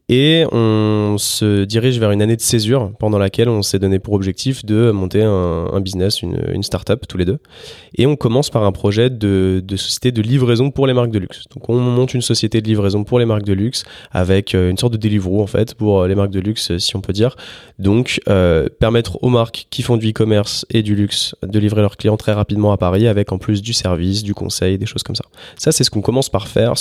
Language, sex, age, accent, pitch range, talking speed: English, male, 20-39, French, 100-120 Hz, 245 wpm